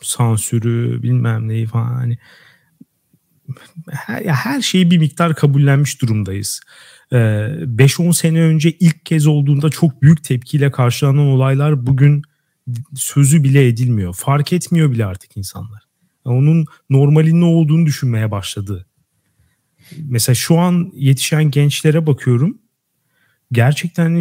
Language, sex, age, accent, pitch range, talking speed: Turkish, male, 40-59, native, 120-155 Hz, 110 wpm